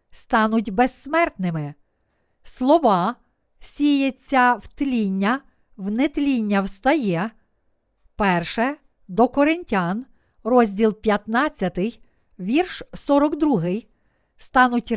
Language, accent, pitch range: Ukrainian, native, 205-290 Hz